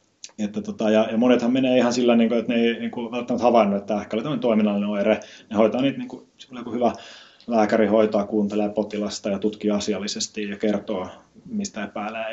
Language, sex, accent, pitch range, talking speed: Finnish, male, native, 105-130 Hz, 185 wpm